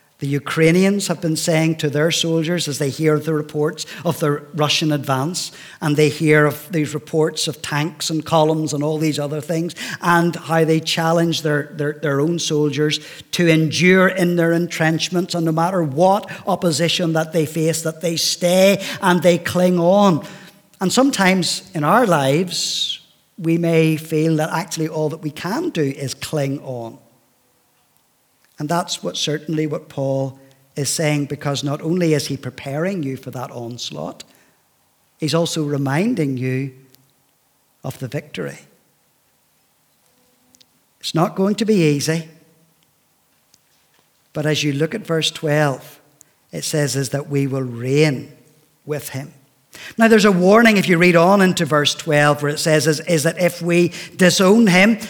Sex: male